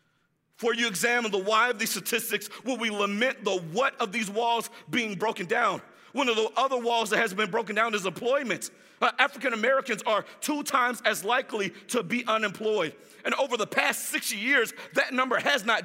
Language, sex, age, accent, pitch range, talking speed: English, male, 50-69, American, 195-245 Hz, 195 wpm